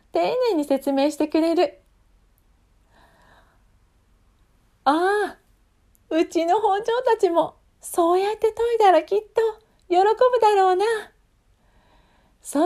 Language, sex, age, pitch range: Japanese, female, 40-59, 235-380 Hz